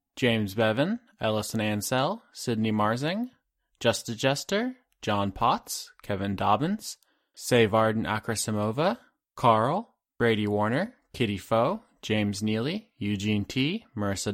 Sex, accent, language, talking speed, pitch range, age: male, American, English, 105 wpm, 105-150 Hz, 20-39